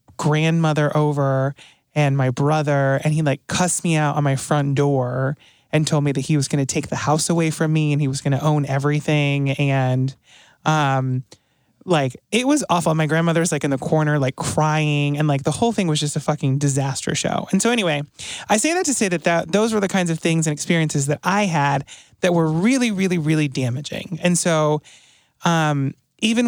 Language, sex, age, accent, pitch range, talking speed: English, male, 20-39, American, 140-170 Hz, 210 wpm